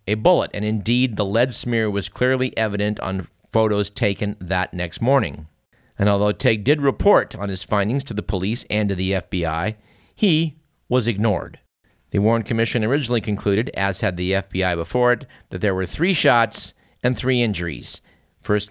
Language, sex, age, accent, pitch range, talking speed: English, male, 50-69, American, 100-130 Hz, 175 wpm